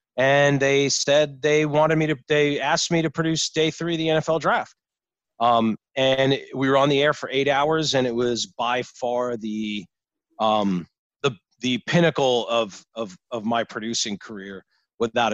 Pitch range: 120-155 Hz